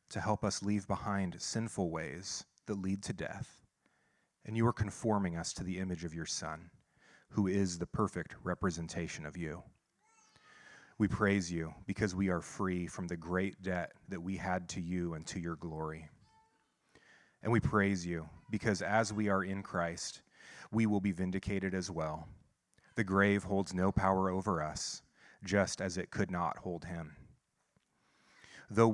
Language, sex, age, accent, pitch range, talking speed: English, male, 30-49, American, 90-105 Hz, 165 wpm